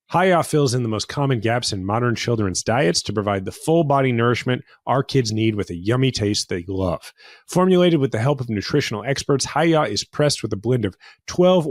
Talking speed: 210 wpm